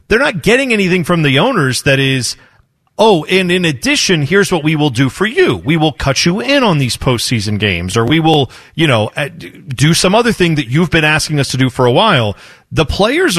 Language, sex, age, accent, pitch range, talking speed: English, male, 40-59, American, 130-175 Hz, 225 wpm